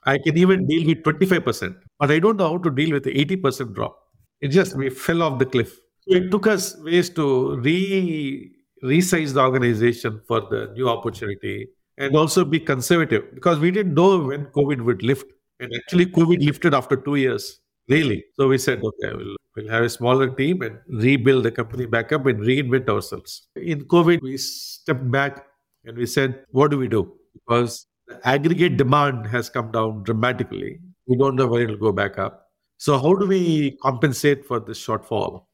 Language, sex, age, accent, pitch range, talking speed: English, male, 50-69, Indian, 125-170 Hz, 190 wpm